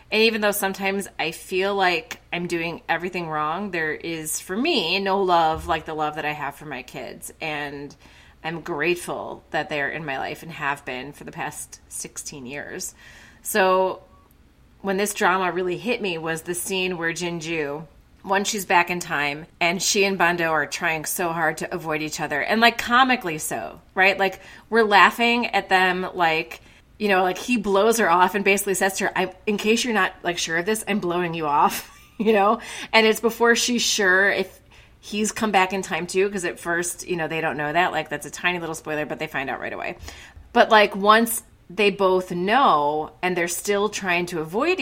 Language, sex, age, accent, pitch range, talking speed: English, female, 30-49, American, 165-200 Hz, 205 wpm